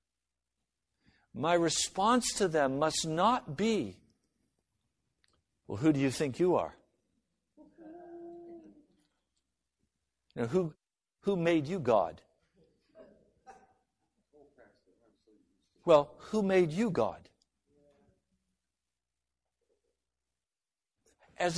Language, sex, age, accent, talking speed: English, male, 60-79, American, 70 wpm